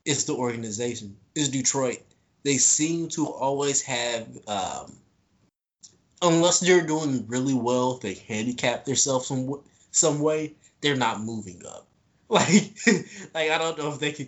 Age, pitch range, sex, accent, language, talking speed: 20-39, 110-155 Hz, male, American, English, 150 wpm